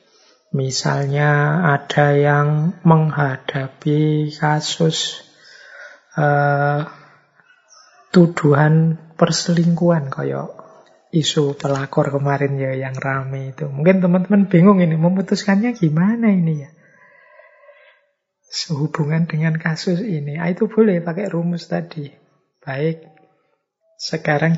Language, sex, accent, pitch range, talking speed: Indonesian, male, native, 145-175 Hz, 85 wpm